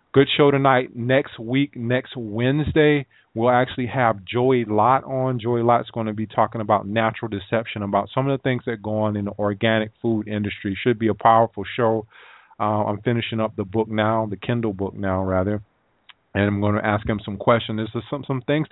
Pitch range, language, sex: 105-125 Hz, English, male